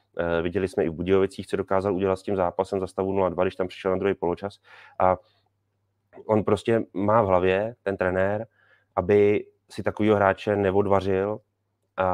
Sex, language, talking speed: male, Czech, 170 wpm